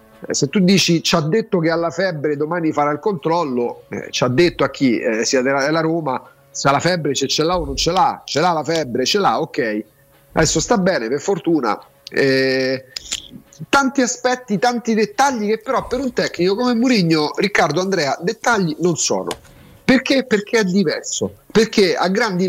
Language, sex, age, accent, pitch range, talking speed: Italian, male, 40-59, native, 140-200 Hz, 190 wpm